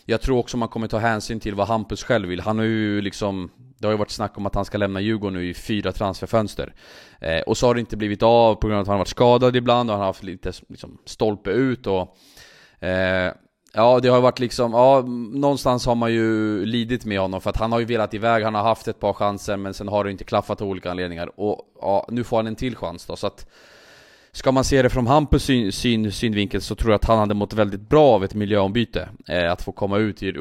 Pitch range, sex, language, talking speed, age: 95-115 Hz, male, Swedish, 260 wpm, 20-39